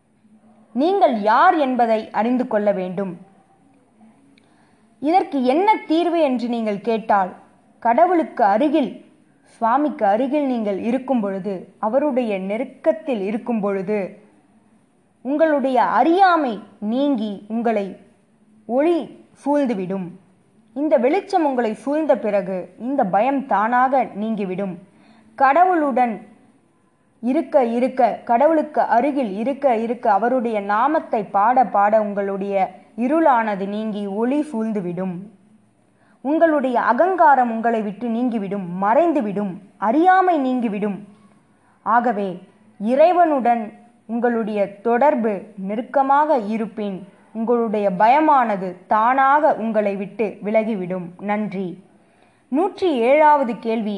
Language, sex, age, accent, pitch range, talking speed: Tamil, female, 20-39, native, 205-275 Hz, 85 wpm